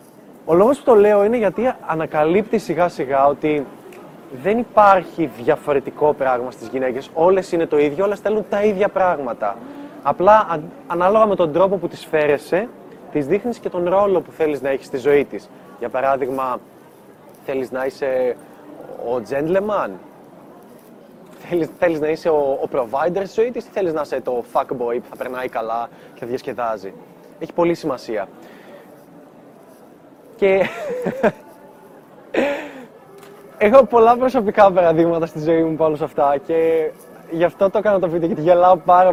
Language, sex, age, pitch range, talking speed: Greek, male, 20-39, 155-210 Hz, 155 wpm